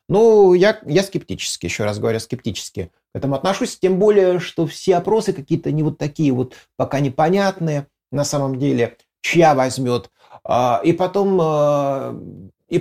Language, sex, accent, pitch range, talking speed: Russian, male, native, 120-170 Hz, 145 wpm